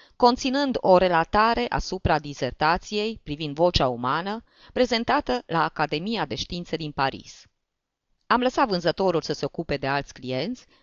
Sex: female